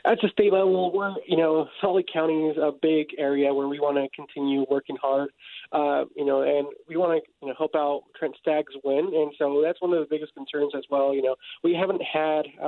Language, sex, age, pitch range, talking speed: English, male, 20-39, 140-165 Hz, 235 wpm